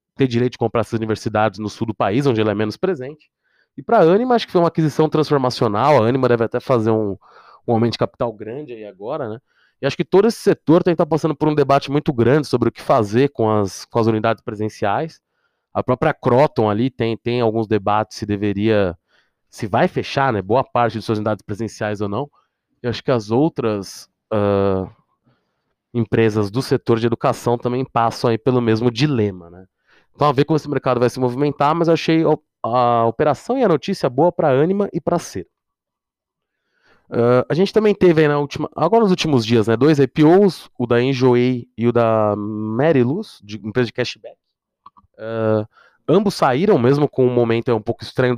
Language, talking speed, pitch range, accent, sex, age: Portuguese, 200 wpm, 110-145 Hz, Brazilian, male, 20-39